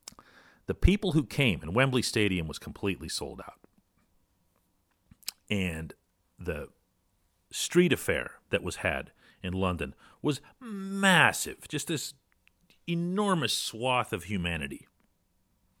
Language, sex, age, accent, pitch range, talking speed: English, male, 40-59, American, 85-125 Hz, 105 wpm